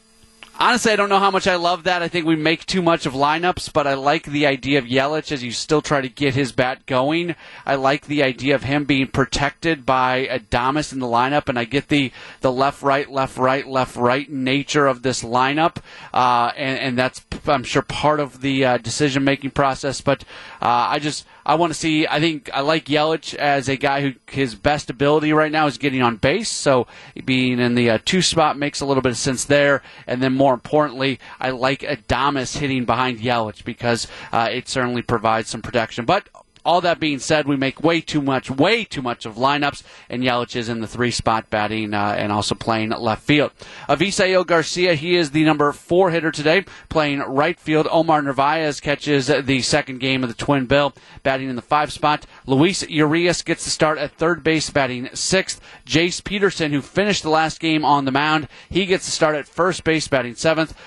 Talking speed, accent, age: 210 wpm, American, 30-49